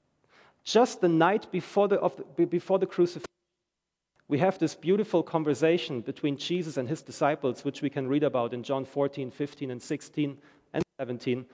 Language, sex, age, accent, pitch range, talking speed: English, male, 40-59, German, 160-210 Hz, 155 wpm